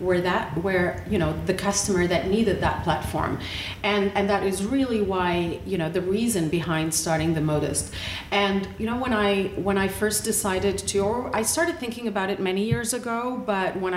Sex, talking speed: female, 200 wpm